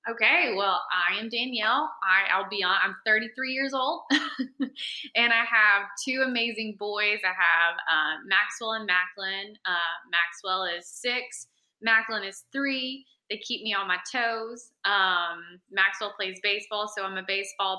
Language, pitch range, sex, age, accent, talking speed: English, 195-225 Hz, female, 20-39, American, 155 wpm